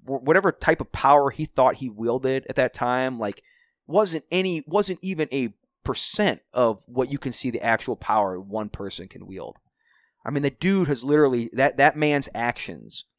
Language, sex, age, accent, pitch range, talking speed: English, male, 30-49, American, 120-180 Hz, 180 wpm